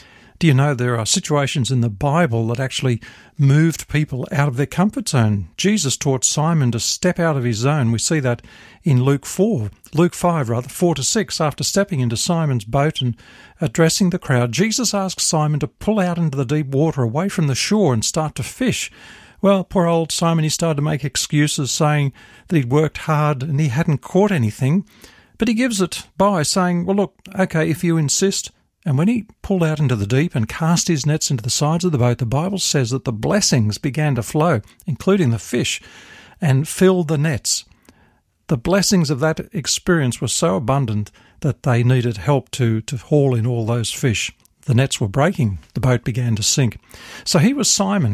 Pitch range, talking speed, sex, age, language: 125-175 Hz, 205 wpm, male, 50-69, English